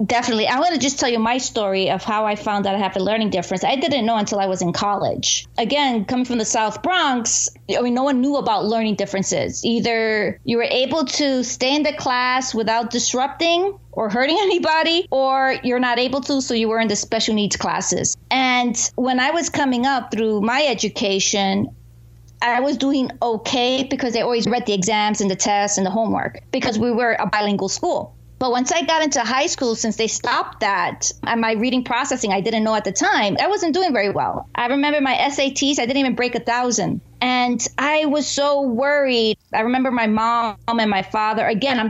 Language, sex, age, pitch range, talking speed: English, female, 30-49, 220-265 Hz, 215 wpm